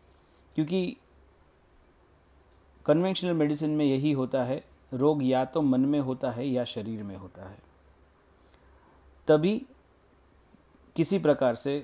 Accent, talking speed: native, 115 wpm